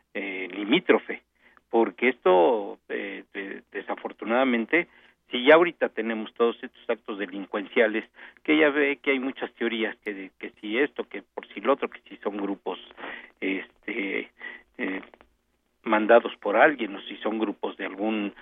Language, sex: Spanish, male